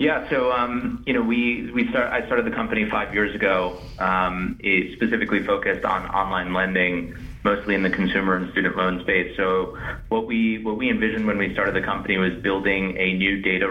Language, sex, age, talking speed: English, male, 30-49, 200 wpm